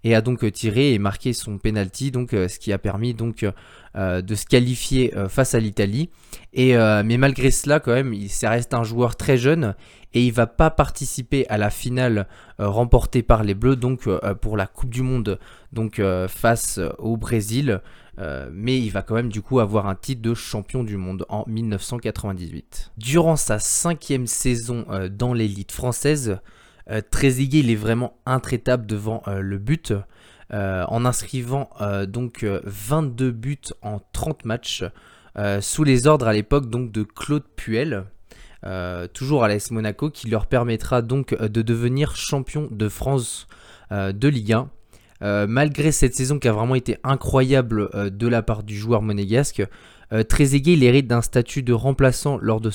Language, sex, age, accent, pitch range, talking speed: French, male, 20-39, French, 105-130 Hz, 185 wpm